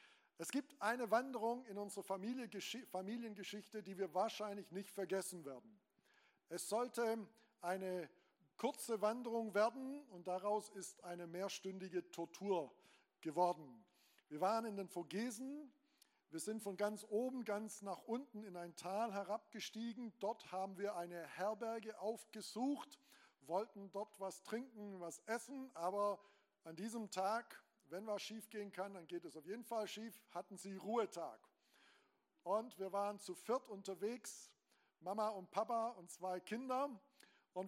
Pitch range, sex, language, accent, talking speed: 185-225 Hz, male, German, German, 140 wpm